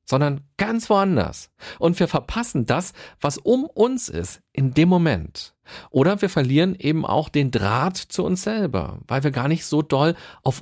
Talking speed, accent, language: 175 wpm, German, German